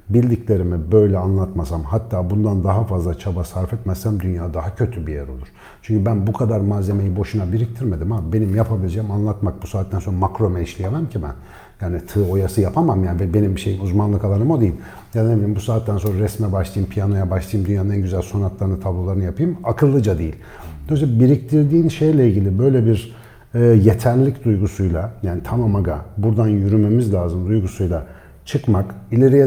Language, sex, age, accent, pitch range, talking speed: Turkish, male, 50-69, native, 95-120 Hz, 160 wpm